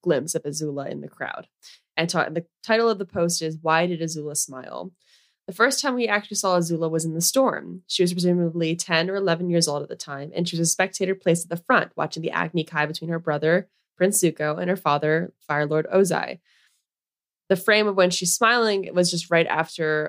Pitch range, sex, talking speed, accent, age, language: 155-180 Hz, female, 225 wpm, American, 20-39, English